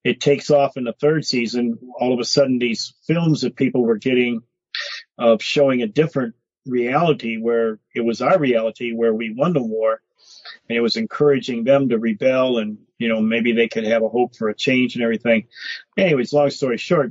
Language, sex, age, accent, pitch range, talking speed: English, male, 40-59, American, 115-140 Hz, 200 wpm